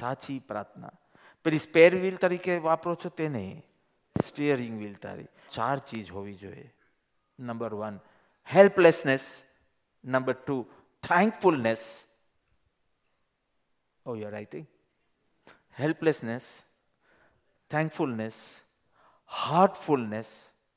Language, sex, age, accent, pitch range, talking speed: Gujarati, male, 50-69, native, 120-175 Hz, 80 wpm